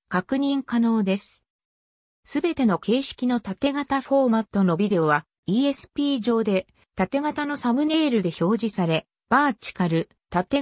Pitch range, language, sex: 185-270 Hz, Japanese, female